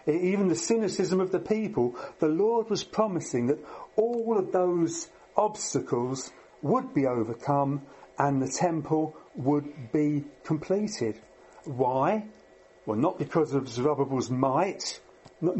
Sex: male